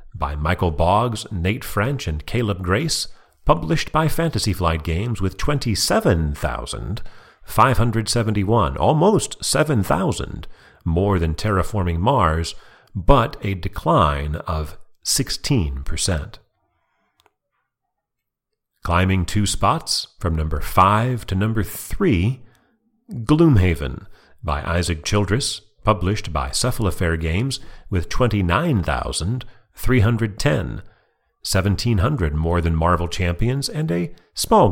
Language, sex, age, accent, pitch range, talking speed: English, male, 40-59, American, 85-120 Hz, 95 wpm